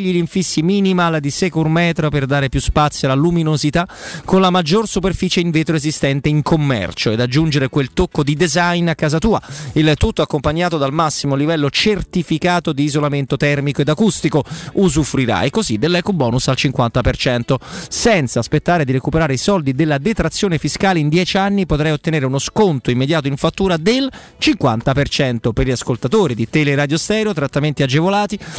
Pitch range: 140-180 Hz